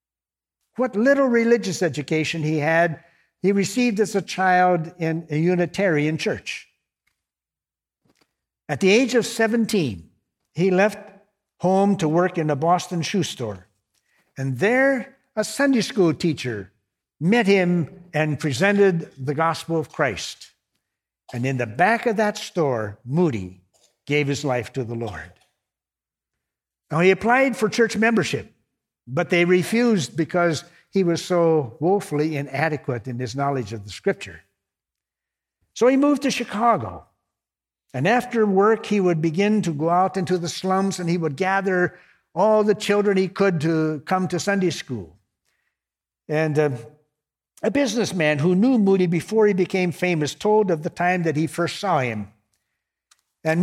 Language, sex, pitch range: English, male, 145-200 Hz